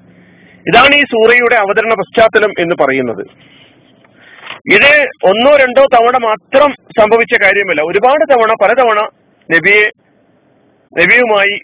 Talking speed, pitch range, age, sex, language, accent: 100 wpm, 185-230 Hz, 40-59, male, Malayalam, native